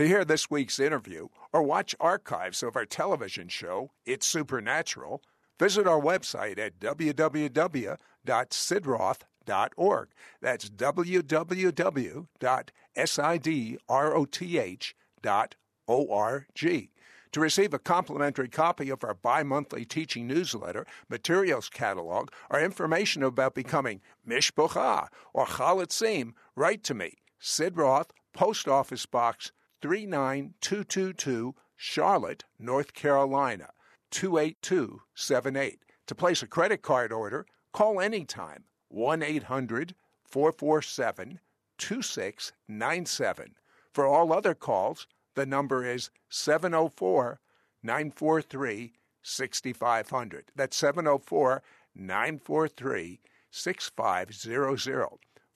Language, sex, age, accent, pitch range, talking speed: English, male, 60-79, American, 130-165 Hz, 75 wpm